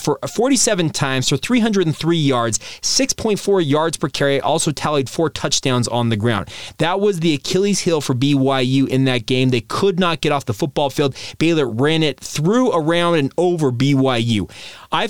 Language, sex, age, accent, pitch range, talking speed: English, male, 30-49, American, 135-185 Hz, 175 wpm